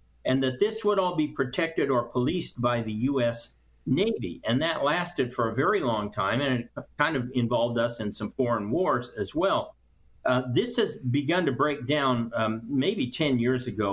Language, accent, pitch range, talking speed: English, American, 105-130 Hz, 195 wpm